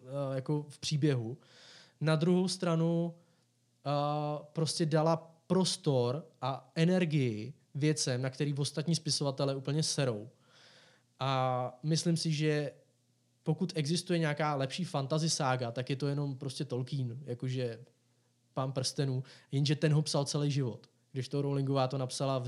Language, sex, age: Czech, male, 20-39